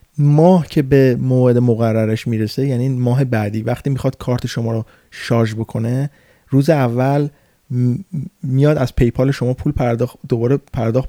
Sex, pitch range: male, 120-140 Hz